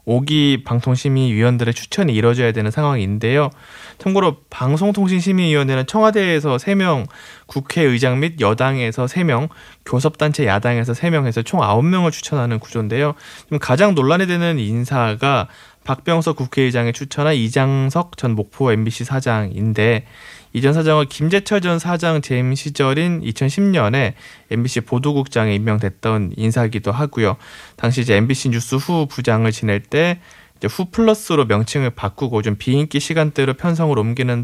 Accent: native